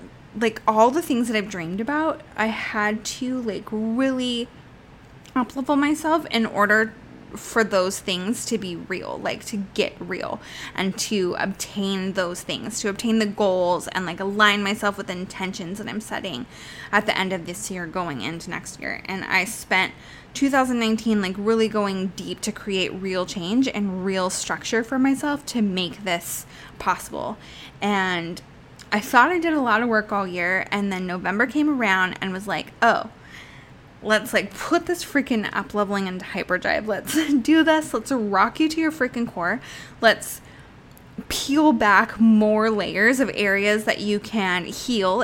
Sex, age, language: female, 10-29, English